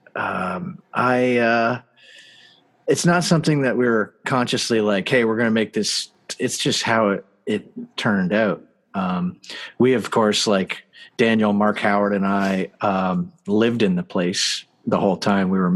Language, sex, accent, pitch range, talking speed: English, male, American, 105-125 Hz, 170 wpm